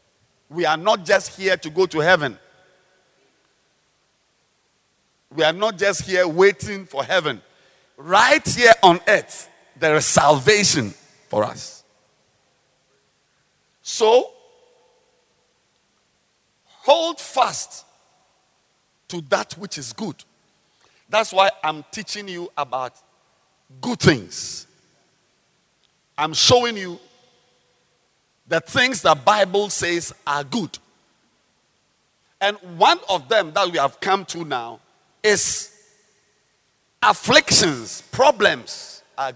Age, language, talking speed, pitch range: 50-69, English, 100 wpm, 145-205 Hz